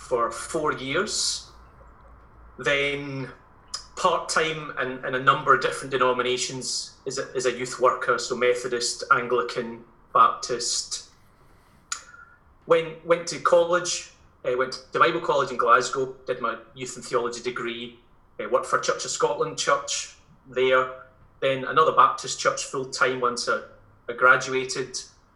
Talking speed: 135 wpm